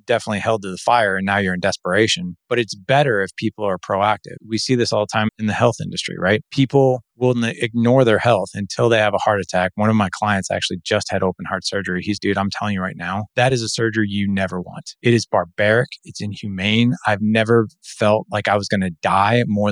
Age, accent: 20-39, American